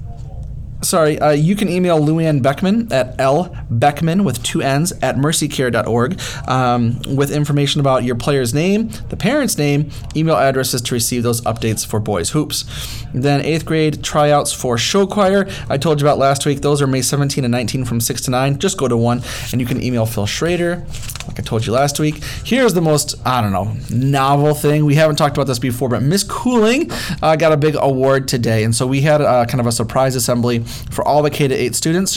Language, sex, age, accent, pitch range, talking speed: English, male, 30-49, American, 120-150 Hz, 205 wpm